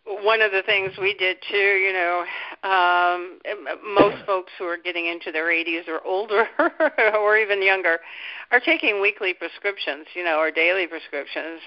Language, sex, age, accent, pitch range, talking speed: English, female, 50-69, American, 175-210 Hz, 165 wpm